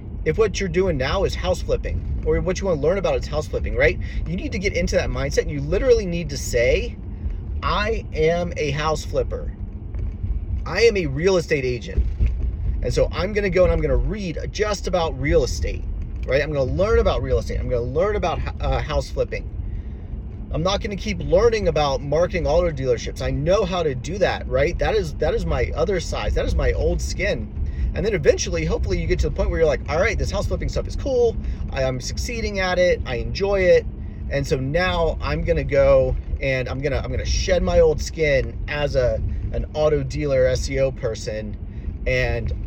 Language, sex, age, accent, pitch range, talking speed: English, male, 30-49, American, 120-180 Hz, 220 wpm